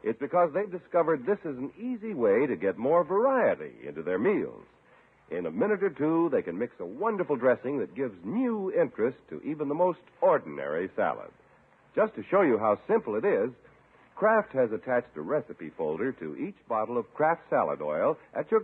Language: English